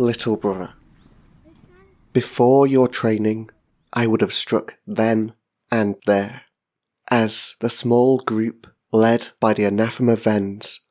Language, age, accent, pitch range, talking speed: English, 30-49, British, 105-120 Hz, 115 wpm